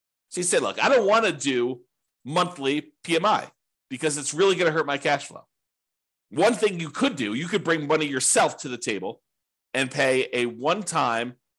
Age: 40-59